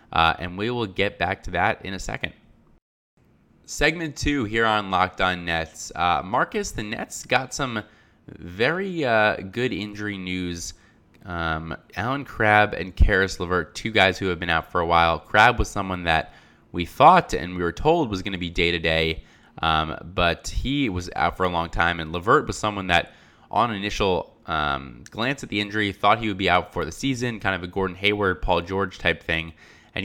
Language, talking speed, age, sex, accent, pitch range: English, 195 wpm, 20-39, male, American, 85-105 Hz